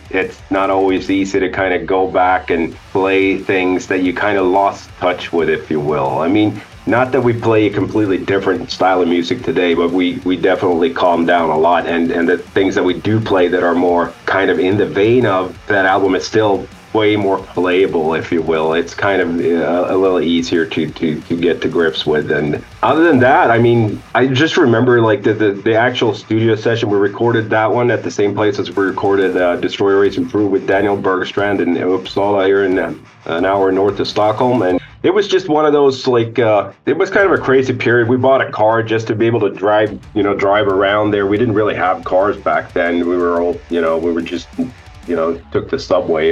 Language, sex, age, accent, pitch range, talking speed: English, male, 40-59, American, 90-110 Hz, 230 wpm